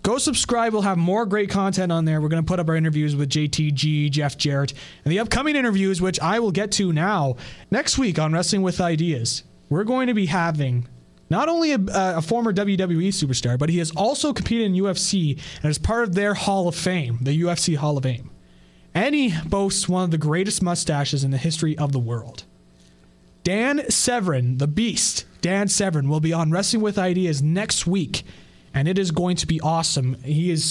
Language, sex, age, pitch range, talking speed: English, male, 20-39, 150-205 Hz, 205 wpm